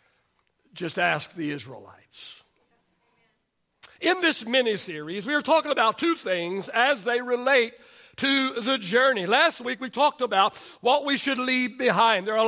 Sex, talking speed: male, 155 wpm